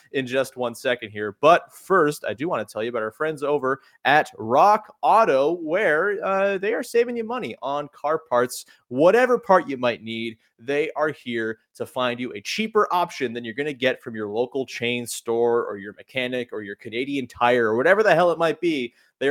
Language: English